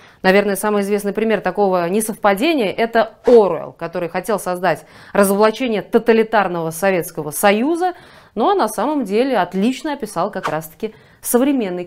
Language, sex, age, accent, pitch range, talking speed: Russian, female, 20-39, native, 195-275 Hz, 125 wpm